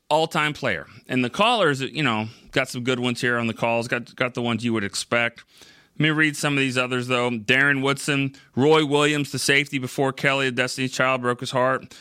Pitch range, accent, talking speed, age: 115-150 Hz, American, 215 wpm, 30-49